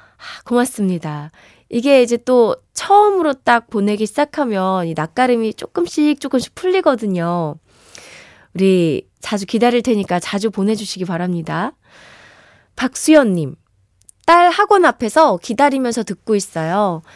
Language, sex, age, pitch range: Korean, female, 20-39, 195-280 Hz